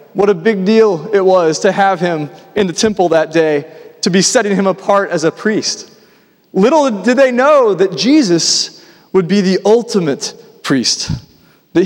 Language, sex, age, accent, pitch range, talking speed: English, male, 30-49, American, 170-215 Hz, 170 wpm